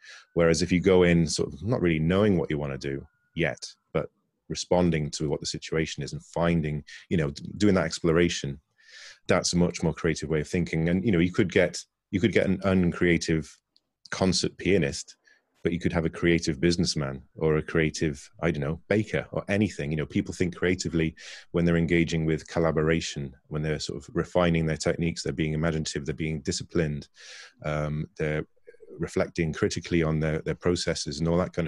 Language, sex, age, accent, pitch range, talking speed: English, male, 30-49, British, 80-90 Hz, 195 wpm